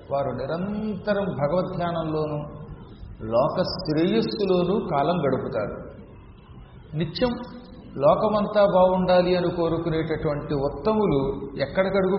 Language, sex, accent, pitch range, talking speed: Telugu, male, native, 145-190 Hz, 75 wpm